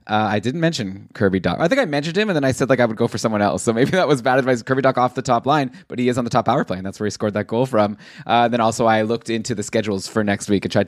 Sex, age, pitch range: male, 20-39, 110-145 Hz